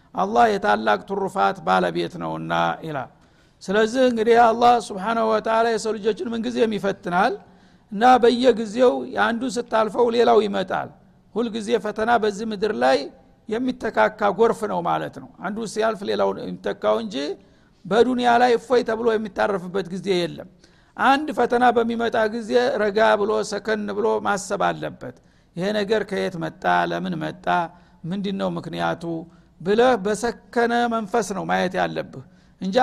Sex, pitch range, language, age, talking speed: male, 200-245 Hz, Amharic, 50-69, 120 wpm